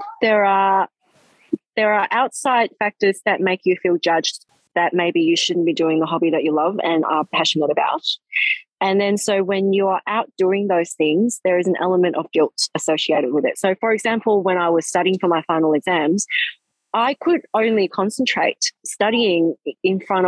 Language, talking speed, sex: English, 185 wpm, female